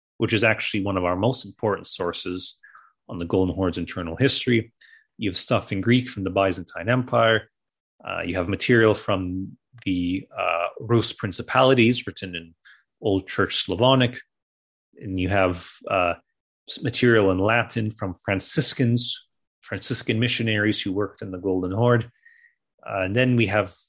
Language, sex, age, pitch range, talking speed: English, male, 30-49, 95-120 Hz, 150 wpm